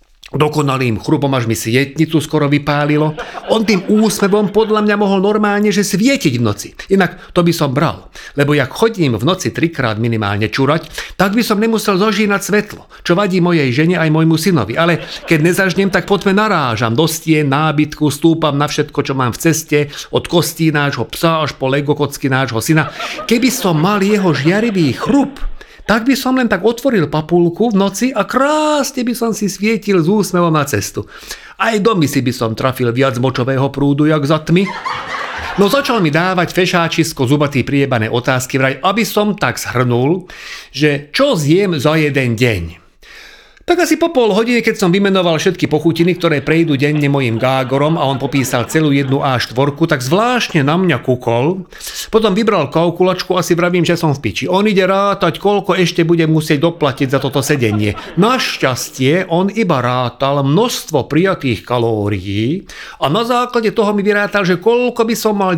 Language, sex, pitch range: Slovak, male, 140-200 Hz